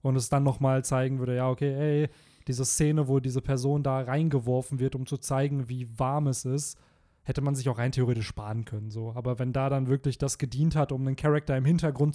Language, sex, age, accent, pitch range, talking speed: German, male, 20-39, German, 125-150 Hz, 230 wpm